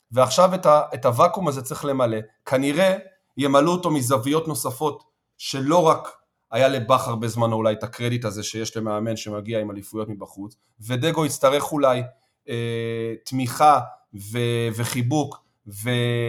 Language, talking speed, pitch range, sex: Hebrew, 135 wpm, 115-165 Hz, male